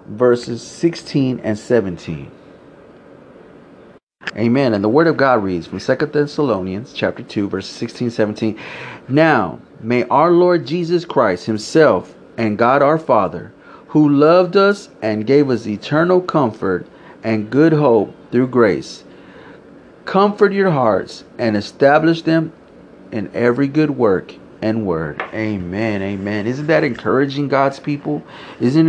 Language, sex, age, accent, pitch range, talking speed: English, male, 30-49, American, 110-150 Hz, 130 wpm